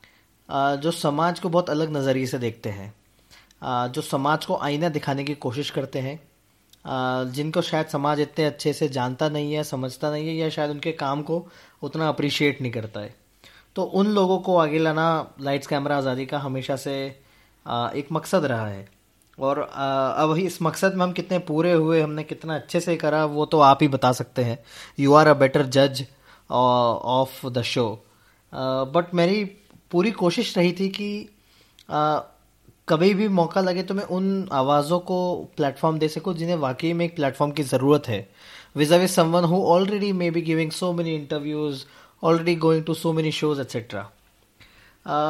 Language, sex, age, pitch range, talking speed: Hindi, male, 20-39, 135-170 Hz, 170 wpm